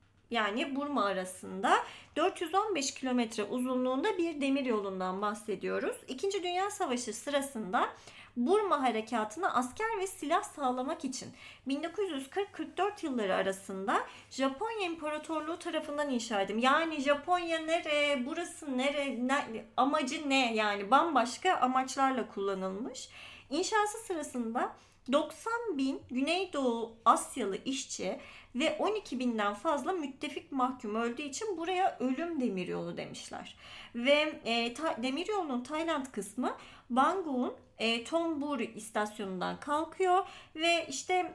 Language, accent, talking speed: Turkish, native, 105 wpm